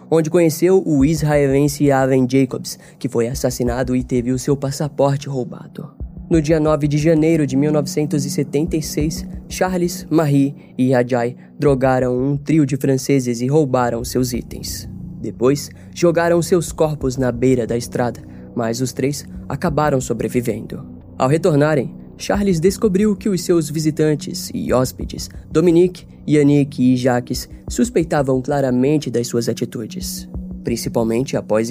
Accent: Brazilian